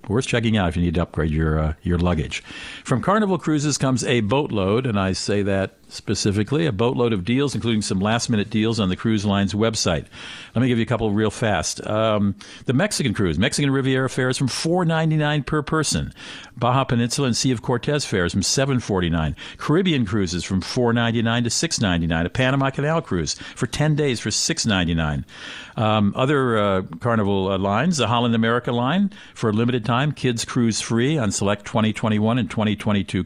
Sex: male